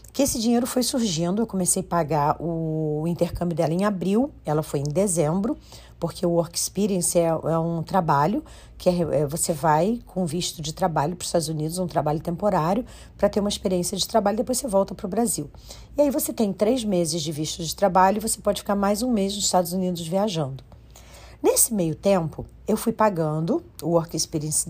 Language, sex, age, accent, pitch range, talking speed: Portuguese, female, 40-59, Brazilian, 160-205 Hz, 200 wpm